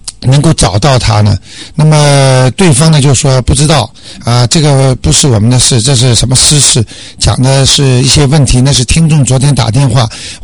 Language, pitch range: Chinese, 120-155 Hz